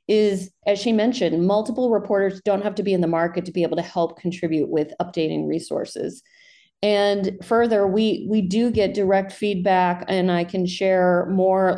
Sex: female